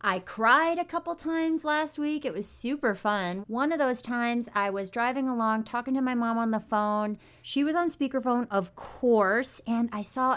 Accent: American